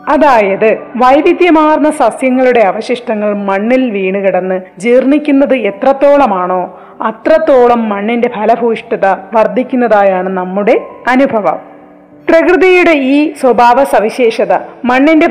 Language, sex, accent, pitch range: Malayalam, female, native, 215-280 Hz